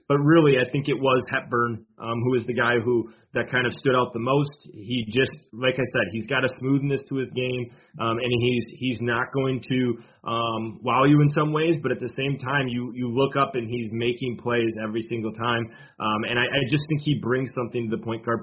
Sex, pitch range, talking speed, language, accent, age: male, 115-135 Hz, 240 wpm, English, American, 30-49